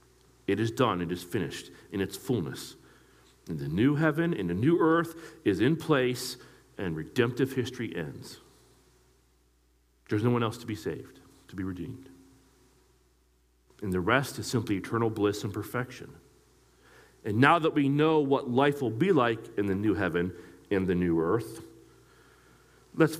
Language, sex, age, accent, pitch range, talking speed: English, male, 40-59, American, 90-135 Hz, 160 wpm